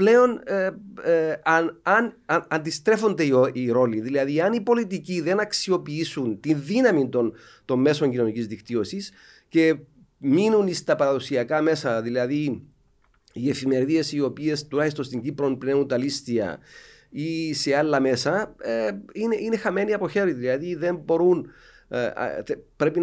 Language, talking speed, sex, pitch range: Greek, 130 wpm, male, 130-190 Hz